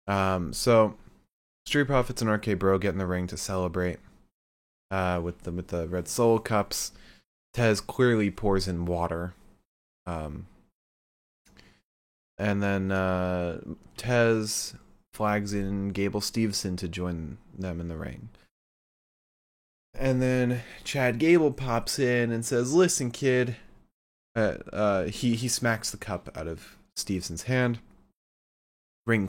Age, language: 20-39, English